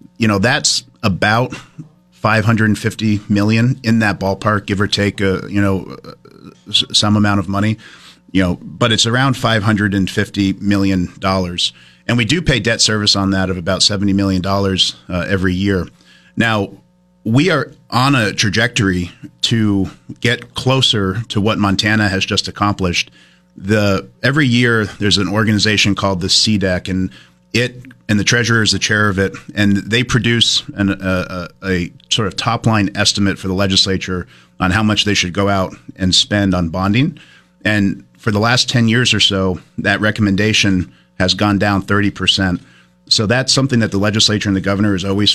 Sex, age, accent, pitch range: male, 40-59, American, 95-110 Hz